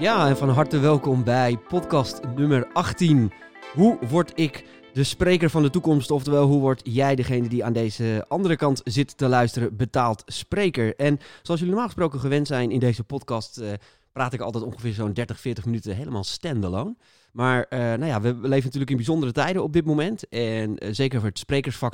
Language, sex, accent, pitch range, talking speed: English, male, Dutch, 115-145 Hz, 195 wpm